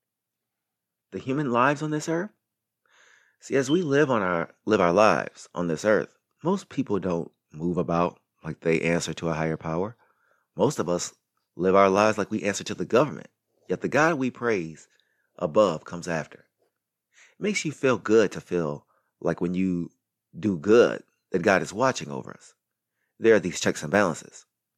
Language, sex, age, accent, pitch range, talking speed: English, male, 30-49, American, 85-125 Hz, 180 wpm